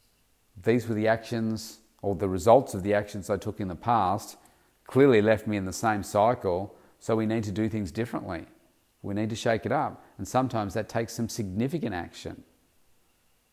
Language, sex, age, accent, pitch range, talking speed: English, male, 40-59, Australian, 95-115 Hz, 185 wpm